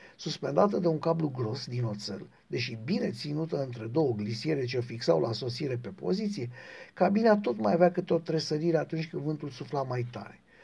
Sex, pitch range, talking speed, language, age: male, 125-180 Hz, 185 wpm, Romanian, 60-79